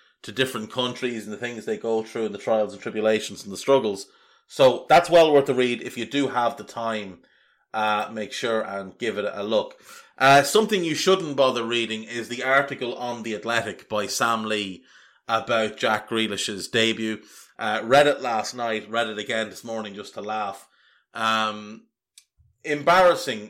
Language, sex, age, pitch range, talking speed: English, male, 30-49, 110-150 Hz, 180 wpm